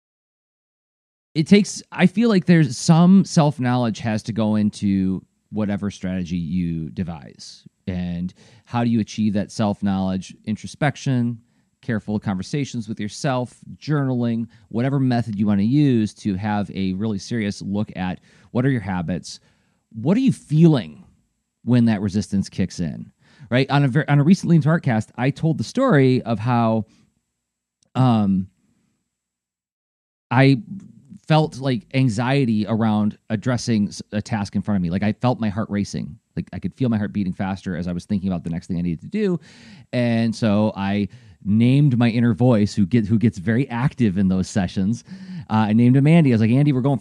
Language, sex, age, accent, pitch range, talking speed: English, male, 30-49, American, 105-135 Hz, 175 wpm